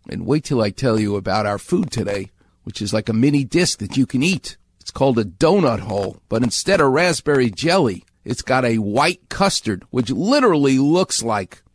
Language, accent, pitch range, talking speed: English, American, 105-160 Hz, 200 wpm